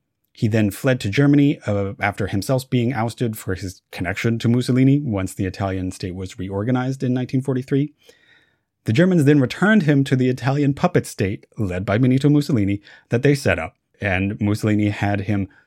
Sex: male